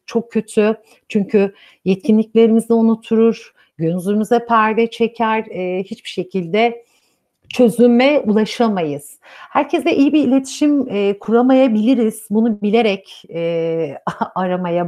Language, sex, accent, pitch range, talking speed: Turkish, female, native, 185-255 Hz, 80 wpm